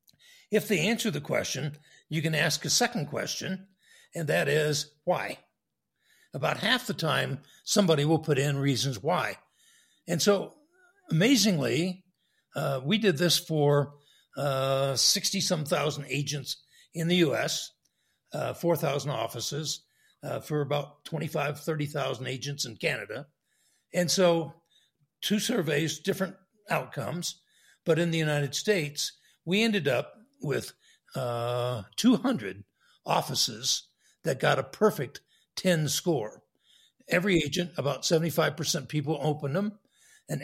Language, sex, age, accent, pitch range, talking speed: English, male, 60-79, American, 145-185 Hz, 125 wpm